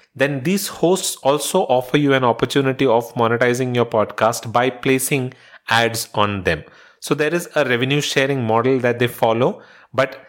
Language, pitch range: English, 115-145 Hz